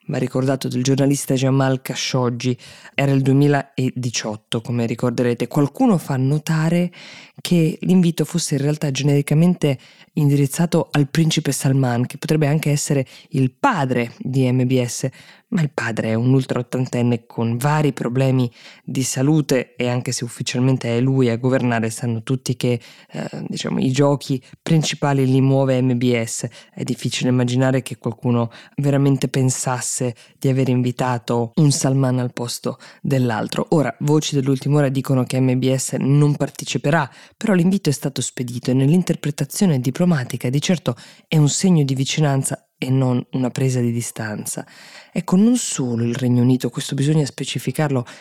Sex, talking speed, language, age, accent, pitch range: female, 145 wpm, Italian, 20-39, native, 125-150 Hz